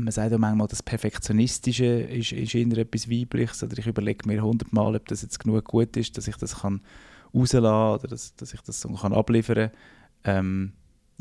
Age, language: 20-39, German